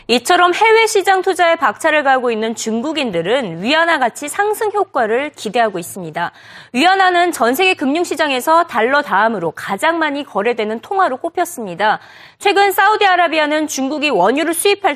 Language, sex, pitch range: Korean, female, 235-360 Hz